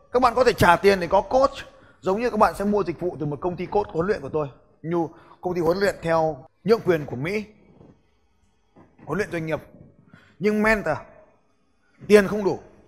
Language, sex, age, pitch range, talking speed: Vietnamese, male, 20-39, 155-210 Hz, 210 wpm